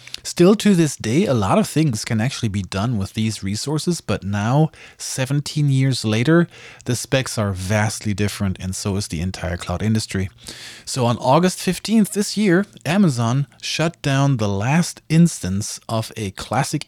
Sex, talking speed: male, 165 wpm